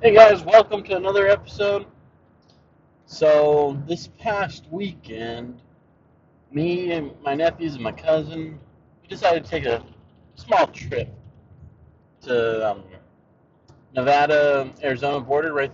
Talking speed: 110 wpm